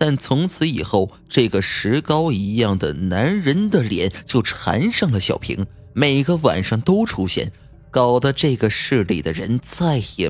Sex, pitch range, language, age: male, 95-140 Hz, Chinese, 30-49